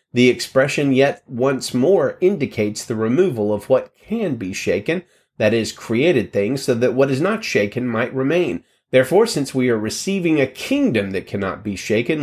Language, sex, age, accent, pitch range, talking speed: English, male, 30-49, American, 115-165 Hz, 175 wpm